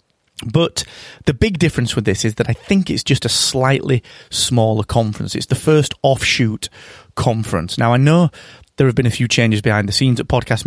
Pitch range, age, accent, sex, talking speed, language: 105-130 Hz, 30-49, British, male, 195 wpm, English